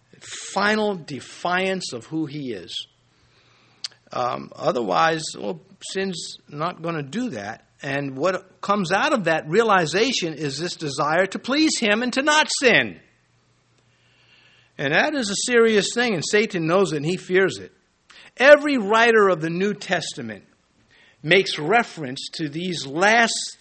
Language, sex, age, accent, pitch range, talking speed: English, male, 60-79, American, 150-205 Hz, 145 wpm